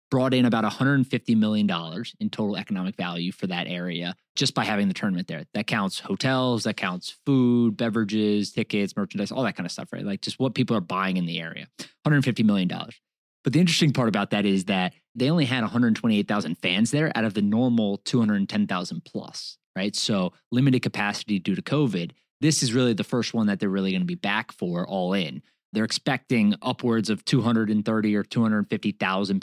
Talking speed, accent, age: 200 wpm, American, 20-39